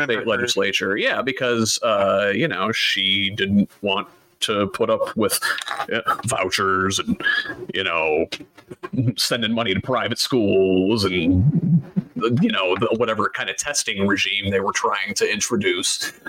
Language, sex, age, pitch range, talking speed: English, male, 30-49, 110-155 Hz, 135 wpm